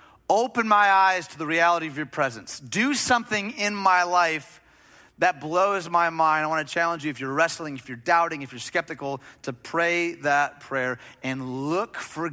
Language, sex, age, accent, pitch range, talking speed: English, male, 30-49, American, 140-185 Hz, 190 wpm